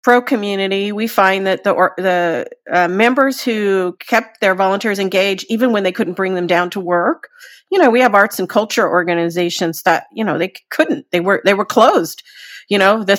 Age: 40-59